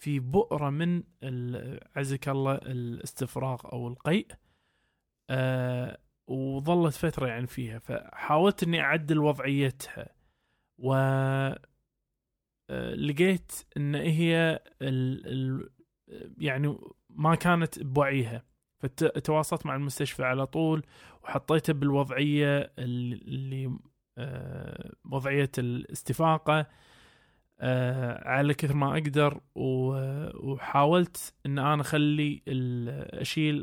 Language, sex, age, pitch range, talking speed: Arabic, male, 20-39, 130-155 Hz, 80 wpm